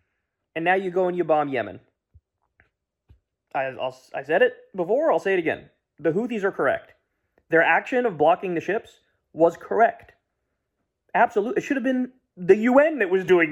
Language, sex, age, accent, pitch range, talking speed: English, male, 30-49, American, 135-185 Hz, 180 wpm